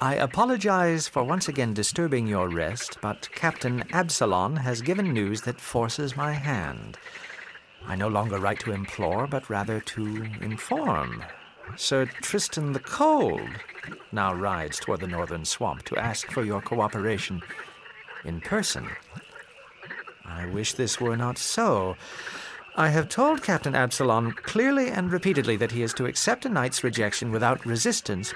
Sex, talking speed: male, 145 wpm